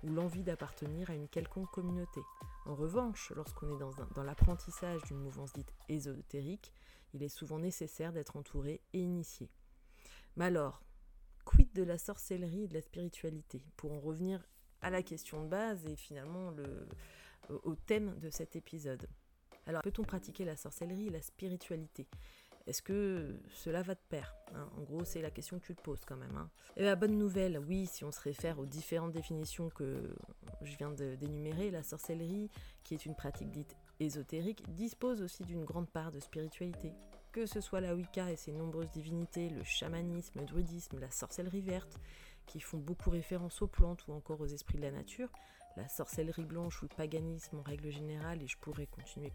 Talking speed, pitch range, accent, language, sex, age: 185 wpm, 150-180 Hz, French, French, female, 30-49